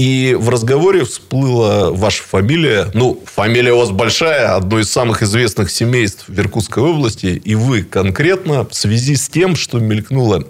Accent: native